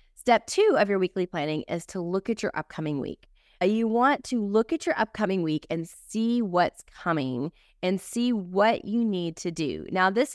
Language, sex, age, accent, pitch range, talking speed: English, female, 20-39, American, 165-220 Hz, 195 wpm